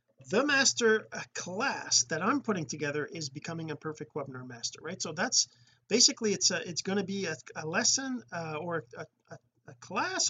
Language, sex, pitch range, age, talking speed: English, male, 150-205 Hz, 40-59, 180 wpm